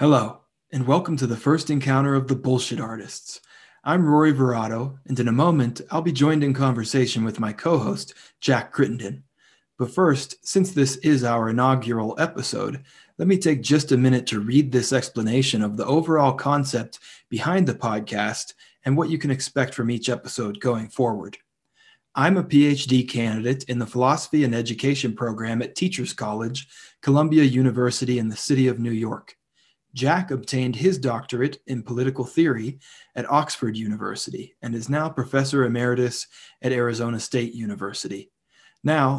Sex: male